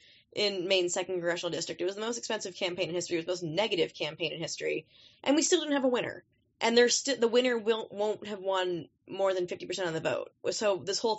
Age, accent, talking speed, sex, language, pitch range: 20-39, American, 230 wpm, female, English, 165-210 Hz